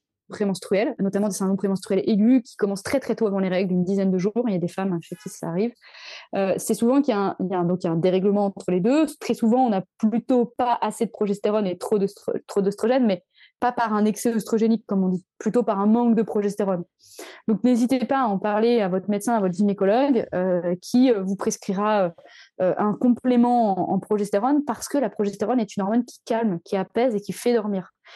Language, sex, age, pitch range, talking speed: French, female, 20-39, 190-235 Hz, 240 wpm